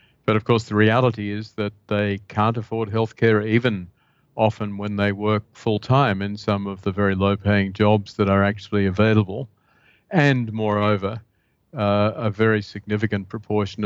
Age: 40-59